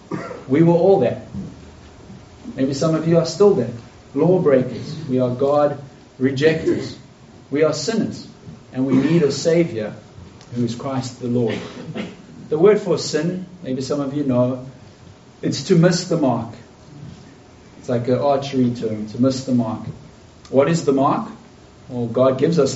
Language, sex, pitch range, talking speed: English, male, 125-150 Hz, 160 wpm